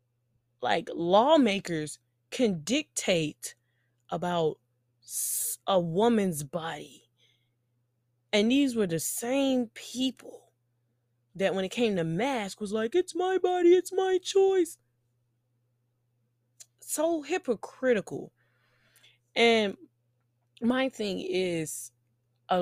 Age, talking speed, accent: 20-39, 95 wpm, American